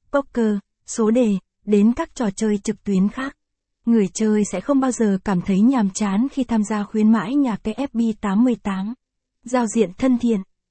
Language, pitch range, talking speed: Vietnamese, 205-240 Hz, 180 wpm